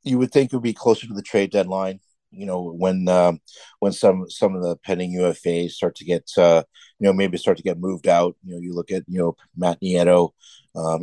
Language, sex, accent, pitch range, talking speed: English, male, American, 90-110 Hz, 240 wpm